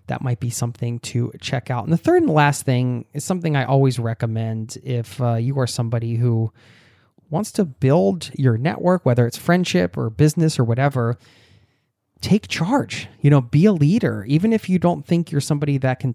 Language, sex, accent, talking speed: English, male, American, 195 wpm